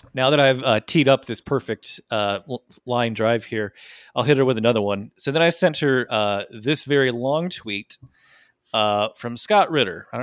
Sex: male